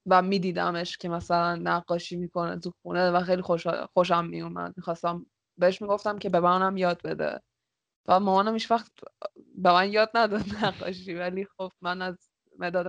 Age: 20-39